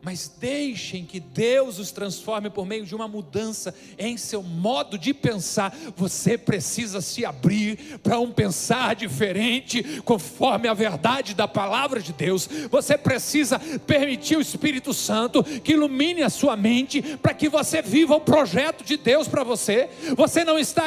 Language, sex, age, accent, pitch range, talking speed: Portuguese, male, 40-59, Brazilian, 255-355 Hz, 160 wpm